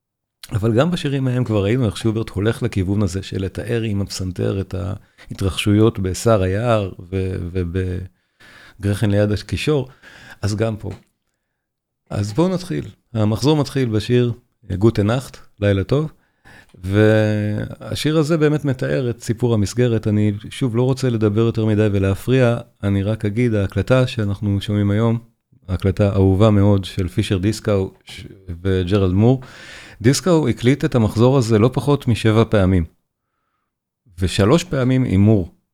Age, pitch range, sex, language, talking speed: 40-59, 95-120 Hz, male, Hebrew, 135 wpm